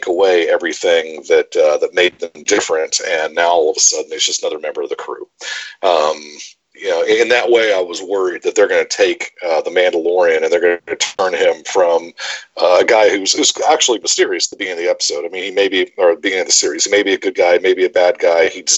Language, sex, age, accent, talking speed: English, male, 40-59, American, 255 wpm